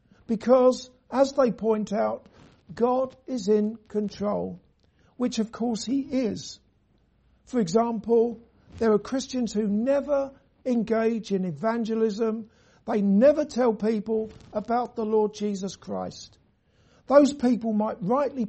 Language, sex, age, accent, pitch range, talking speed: English, male, 60-79, British, 210-250 Hz, 120 wpm